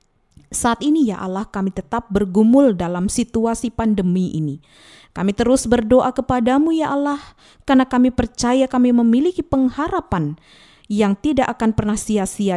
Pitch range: 190-245 Hz